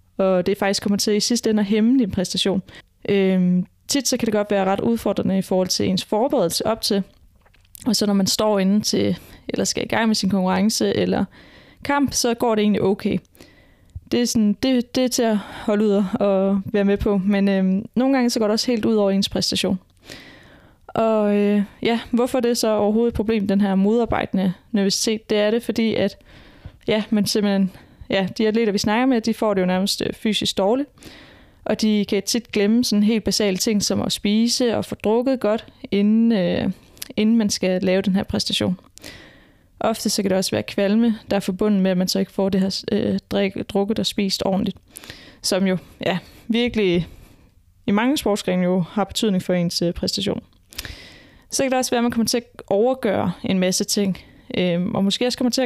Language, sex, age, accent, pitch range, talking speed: Danish, female, 20-39, native, 195-225 Hz, 205 wpm